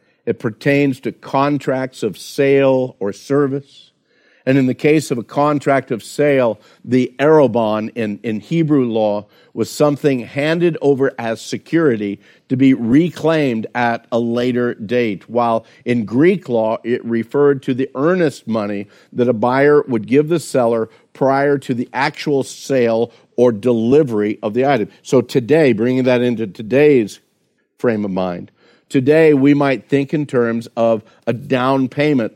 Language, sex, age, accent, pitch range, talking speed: English, male, 50-69, American, 115-140 Hz, 150 wpm